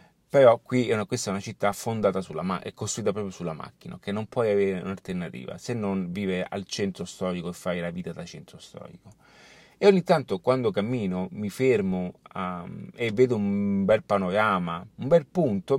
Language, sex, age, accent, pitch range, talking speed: Italian, male, 30-49, native, 100-140 Hz, 185 wpm